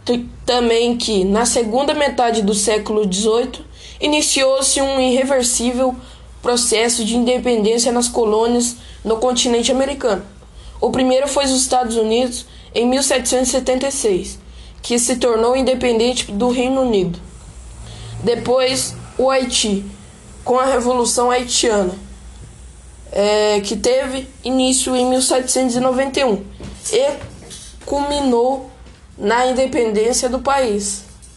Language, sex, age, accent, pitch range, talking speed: Portuguese, female, 10-29, Brazilian, 215-255 Hz, 100 wpm